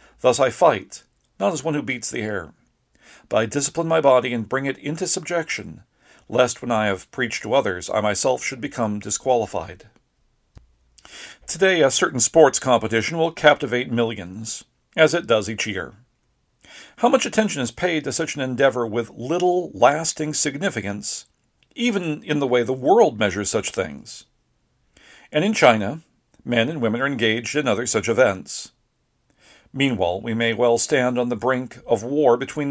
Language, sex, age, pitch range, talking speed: English, male, 50-69, 115-155 Hz, 165 wpm